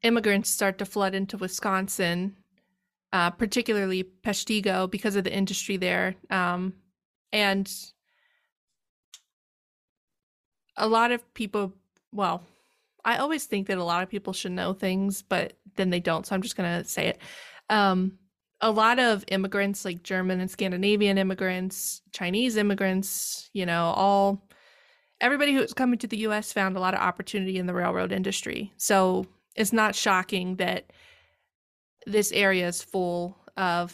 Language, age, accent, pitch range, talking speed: English, 20-39, American, 185-215 Hz, 145 wpm